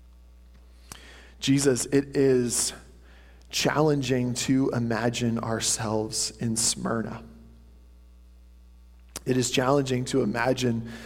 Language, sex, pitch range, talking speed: English, male, 110-140 Hz, 75 wpm